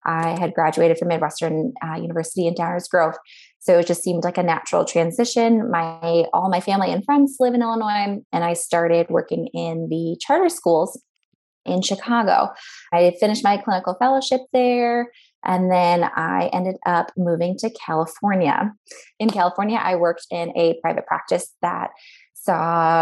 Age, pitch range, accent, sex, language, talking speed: 20-39, 170-220 Hz, American, female, English, 160 wpm